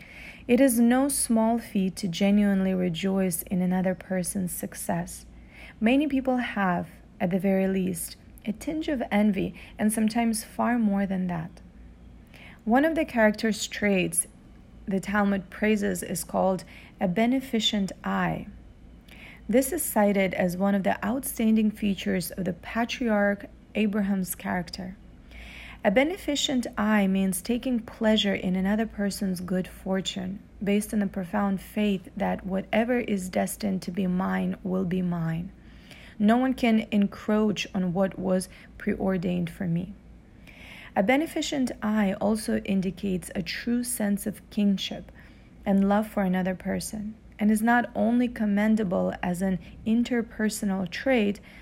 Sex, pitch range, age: female, 190-225 Hz, 30-49